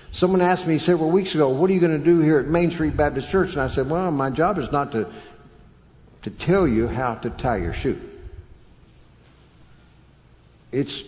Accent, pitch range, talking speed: American, 115-165 Hz, 190 wpm